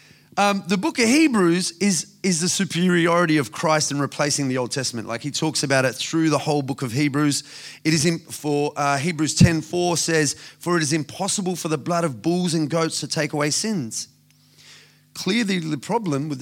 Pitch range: 145-185 Hz